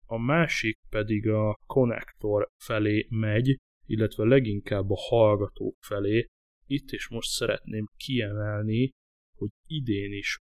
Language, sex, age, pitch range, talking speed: Hungarian, male, 20-39, 105-115 Hz, 115 wpm